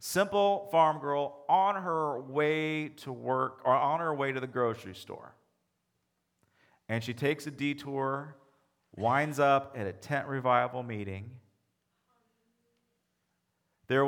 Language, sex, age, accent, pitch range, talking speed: English, male, 40-59, American, 115-155 Hz, 125 wpm